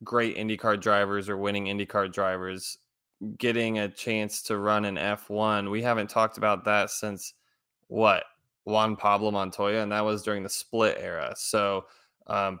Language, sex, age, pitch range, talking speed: English, male, 20-39, 100-115 Hz, 155 wpm